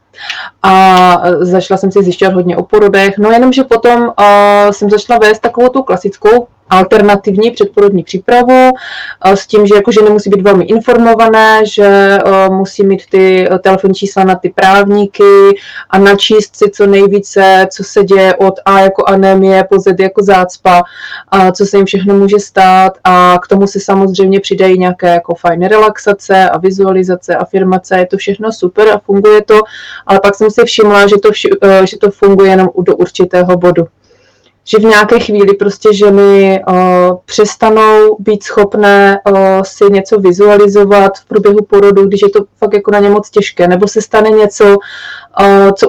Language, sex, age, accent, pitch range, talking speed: Czech, female, 20-39, native, 185-210 Hz, 165 wpm